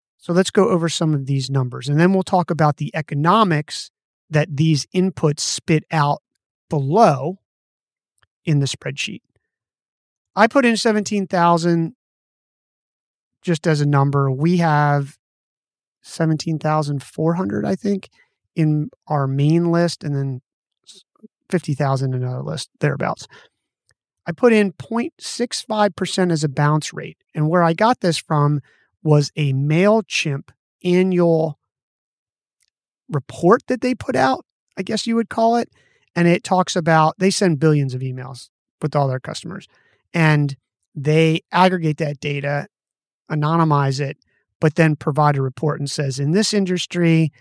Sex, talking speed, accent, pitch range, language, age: male, 135 wpm, American, 145-180 Hz, English, 30-49